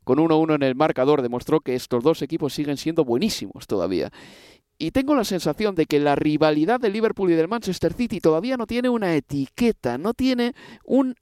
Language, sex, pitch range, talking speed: Spanish, male, 145-215 Hz, 195 wpm